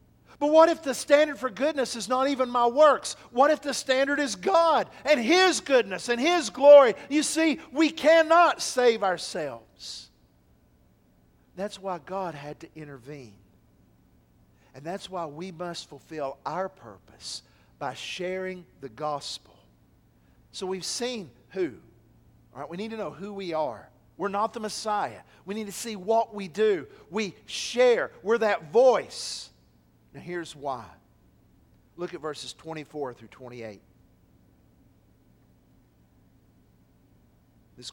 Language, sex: English, male